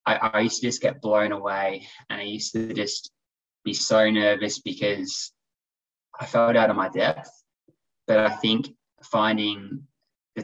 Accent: Australian